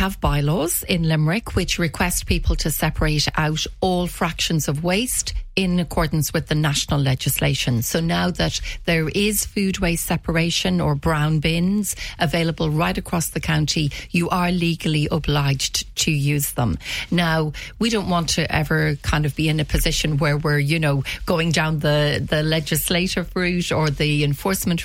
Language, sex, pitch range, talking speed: English, female, 150-175 Hz, 165 wpm